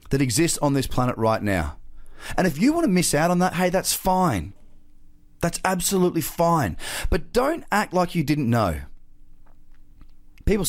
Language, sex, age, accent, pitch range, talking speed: English, male, 30-49, Australian, 105-175 Hz, 170 wpm